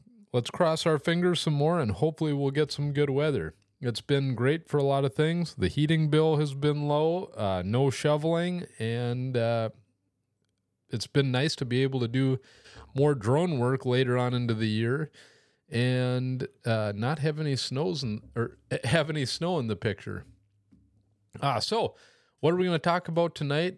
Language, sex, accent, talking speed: English, male, American, 180 wpm